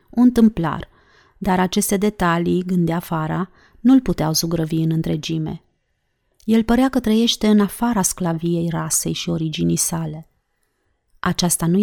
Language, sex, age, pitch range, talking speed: Romanian, female, 30-49, 170-215 Hz, 125 wpm